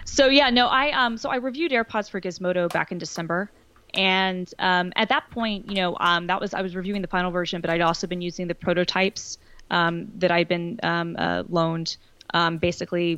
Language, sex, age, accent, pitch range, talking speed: English, female, 20-39, American, 175-205 Hz, 210 wpm